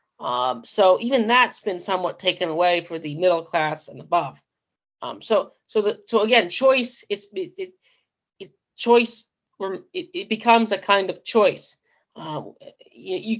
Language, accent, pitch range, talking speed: English, American, 175-230 Hz, 160 wpm